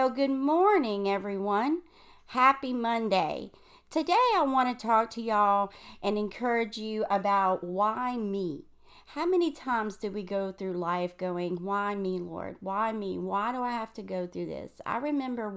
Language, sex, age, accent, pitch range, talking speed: English, female, 40-59, American, 195-265 Hz, 165 wpm